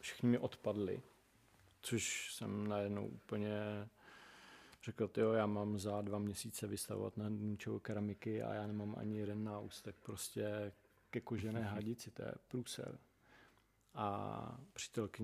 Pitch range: 105-120 Hz